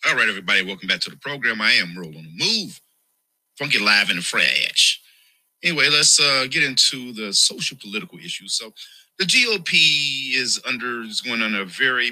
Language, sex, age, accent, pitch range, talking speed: English, male, 40-59, American, 85-115 Hz, 185 wpm